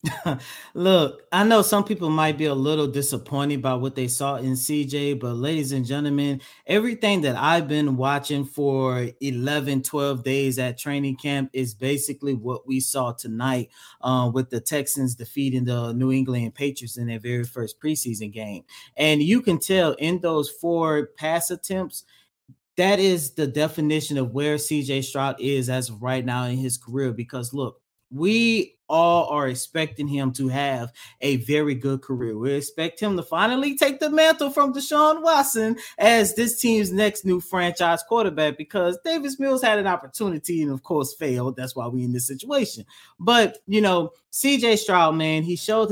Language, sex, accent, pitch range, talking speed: English, male, American, 130-170 Hz, 175 wpm